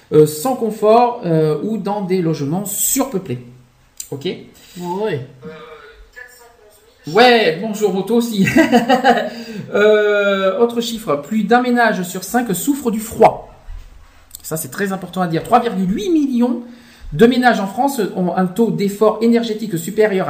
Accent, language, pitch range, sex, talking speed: French, French, 165-230 Hz, male, 130 wpm